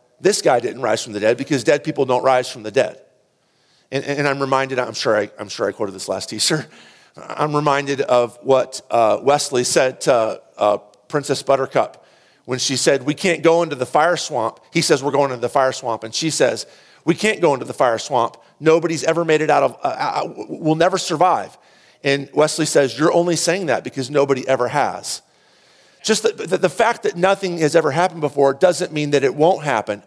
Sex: male